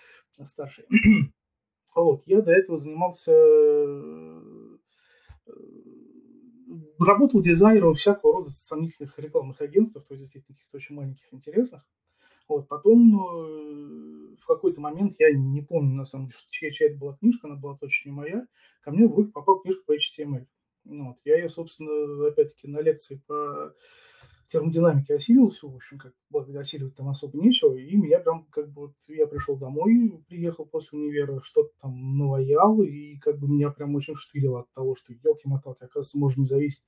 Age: 20-39